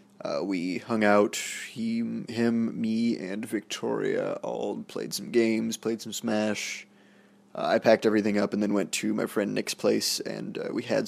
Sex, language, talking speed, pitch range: male, English, 180 wpm, 105-115 Hz